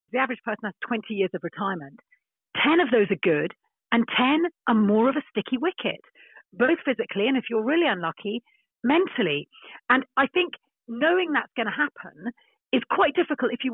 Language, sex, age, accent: English, female, 40-59, British